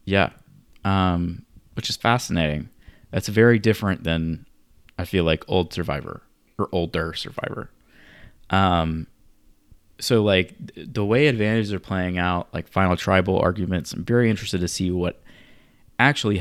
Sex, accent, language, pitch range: male, American, English, 90-110 Hz